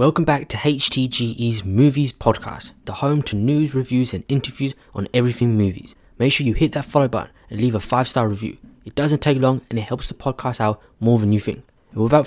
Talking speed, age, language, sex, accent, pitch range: 215 wpm, 20-39, English, male, British, 110-140 Hz